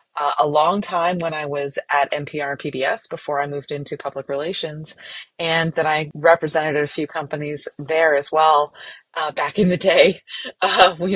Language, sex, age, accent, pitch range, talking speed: English, female, 30-49, American, 155-200 Hz, 170 wpm